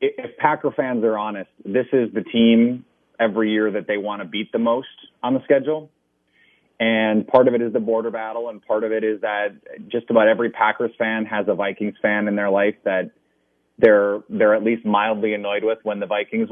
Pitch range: 105-115 Hz